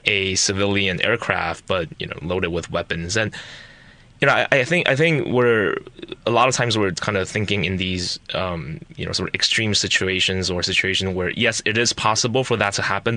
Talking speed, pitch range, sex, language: 210 wpm, 95-115 Hz, male, English